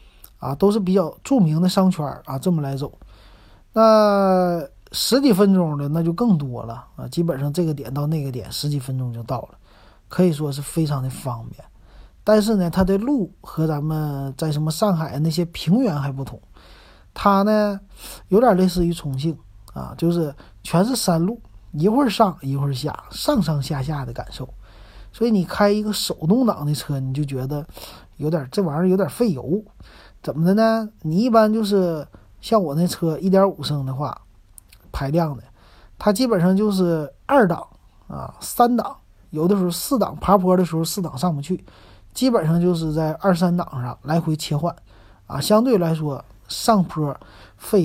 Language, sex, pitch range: Chinese, male, 135-190 Hz